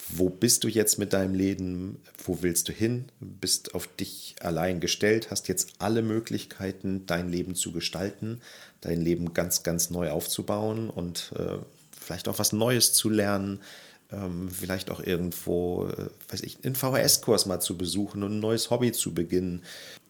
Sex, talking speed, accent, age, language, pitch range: male, 165 wpm, German, 40-59, German, 90-105 Hz